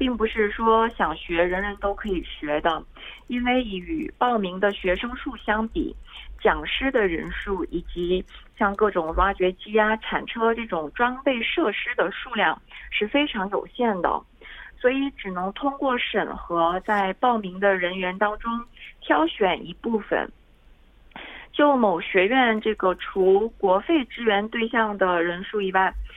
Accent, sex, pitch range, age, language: Chinese, female, 190-240 Hz, 30-49, Korean